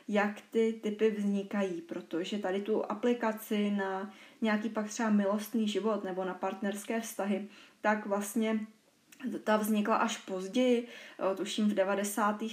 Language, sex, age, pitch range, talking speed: Czech, female, 20-39, 195-220 Hz, 130 wpm